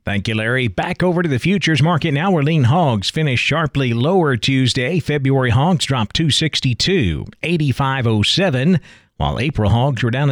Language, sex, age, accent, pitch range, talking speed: English, male, 40-59, American, 120-150 Hz, 150 wpm